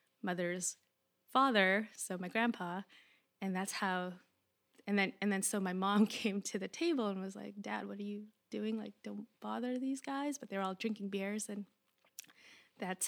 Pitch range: 185-225 Hz